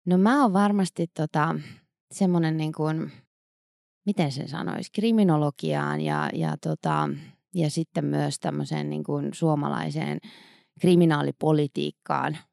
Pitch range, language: 145-180 Hz, Finnish